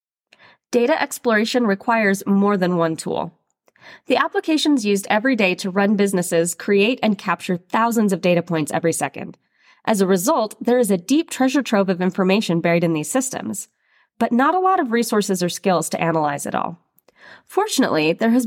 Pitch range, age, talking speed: 175-240 Hz, 20-39, 175 wpm